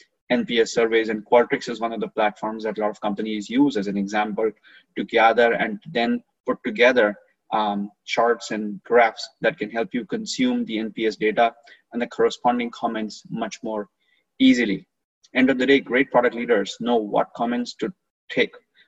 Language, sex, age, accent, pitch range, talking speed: English, male, 30-49, Indian, 110-135 Hz, 175 wpm